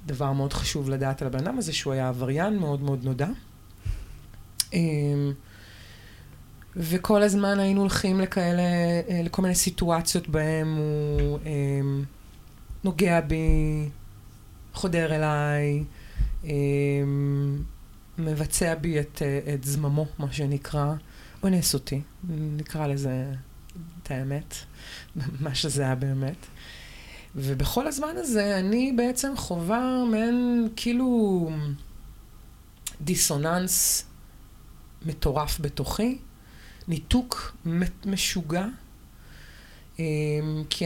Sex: female